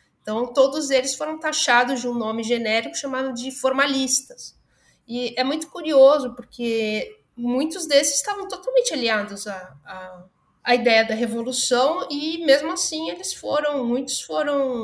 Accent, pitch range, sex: Brazilian, 220-270 Hz, female